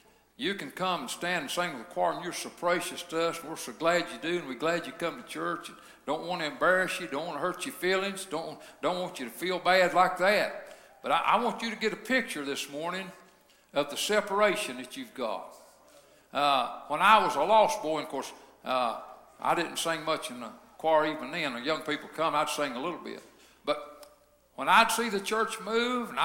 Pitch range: 170-230 Hz